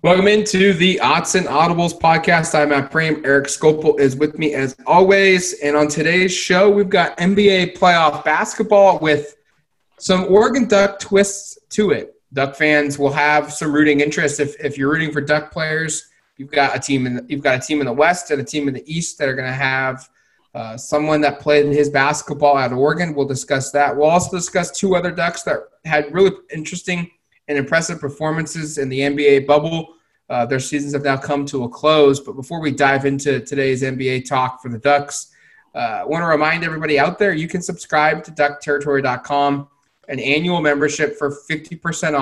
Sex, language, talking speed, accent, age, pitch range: male, English, 195 wpm, American, 20-39, 140-165 Hz